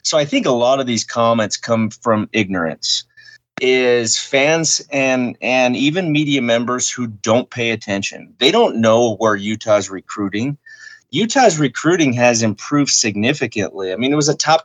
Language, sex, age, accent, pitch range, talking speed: English, male, 30-49, American, 110-145 Hz, 160 wpm